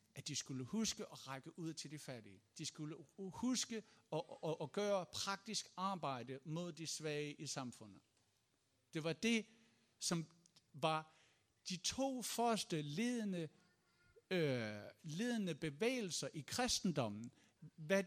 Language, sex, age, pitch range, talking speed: Danish, male, 60-79, 135-200 Hz, 135 wpm